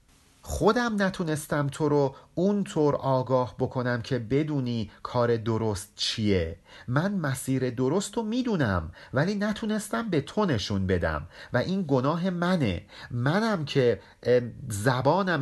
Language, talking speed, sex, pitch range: Persian, 115 wpm, male, 120-185 Hz